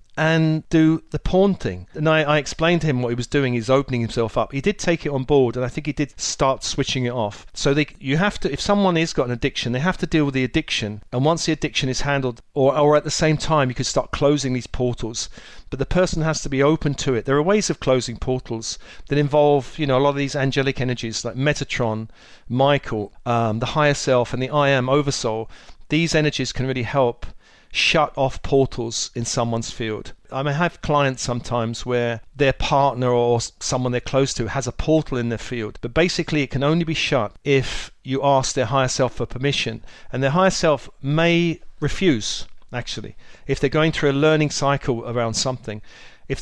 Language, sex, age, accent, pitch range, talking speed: English, male, 40-59, British, 120-150 Hz, 220 wpm